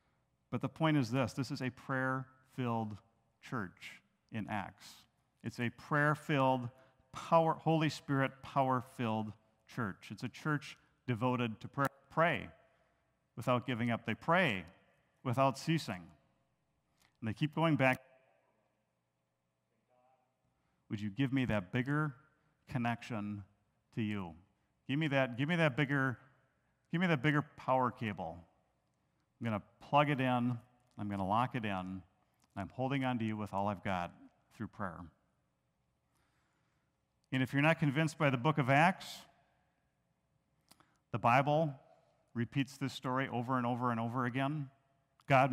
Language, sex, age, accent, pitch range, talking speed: English, male, 40-59, American, 115-145 Hz, 135 wpm